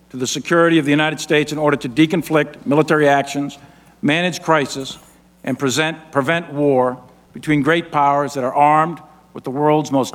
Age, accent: 50-69, American